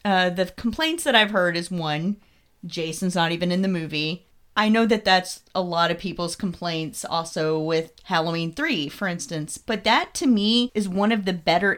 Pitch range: 175-225 Hz